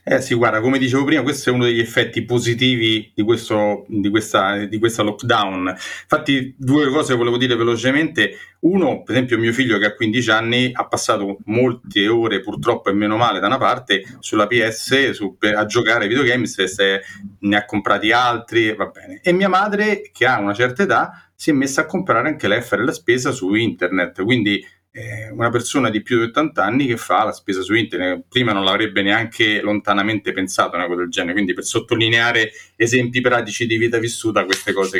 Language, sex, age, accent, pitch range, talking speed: Italian, male, 30-49, native, 110-135 Hz, 195 wpm